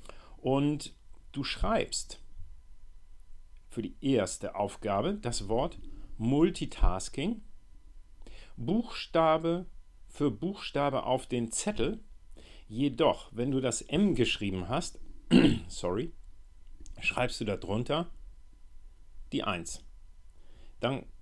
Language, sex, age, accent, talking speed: German, male, 40-59, German, 85 wpm